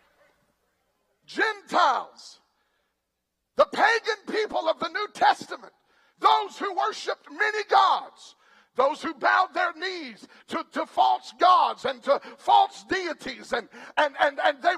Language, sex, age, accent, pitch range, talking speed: English, male, 50-69, American, 255-370 Hz, 125 wpm